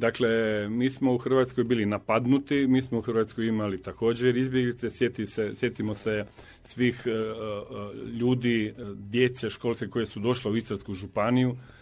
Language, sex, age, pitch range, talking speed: Croatian, male, 40-59, 105-125 Hz, 155 wpm